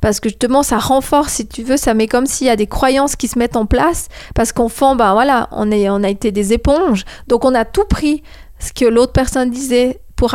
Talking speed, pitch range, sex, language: 250 wpm, 225-260 Hz, female, French